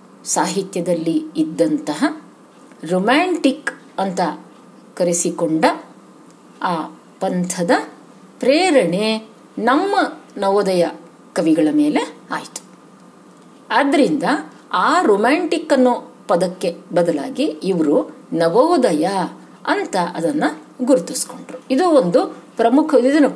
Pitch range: 235-295 Hz